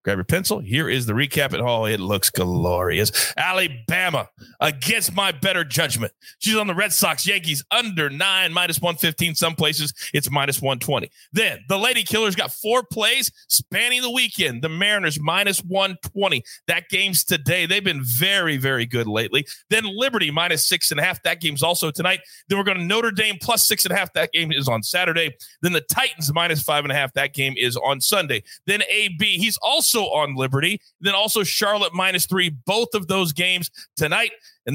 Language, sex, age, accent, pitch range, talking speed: English, male, 30-49, American, 140-195 Hz, 195 wpm